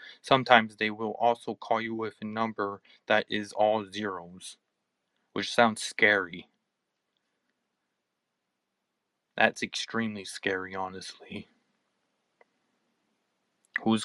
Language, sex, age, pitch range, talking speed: English, male, 20-39, 100-115 Hz, 90 wpm